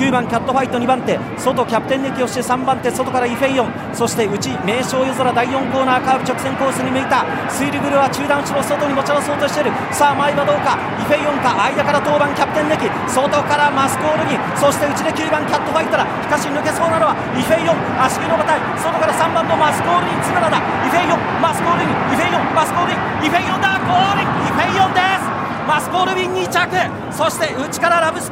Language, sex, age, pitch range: Japanese, male, 40-59, 265-320 Hz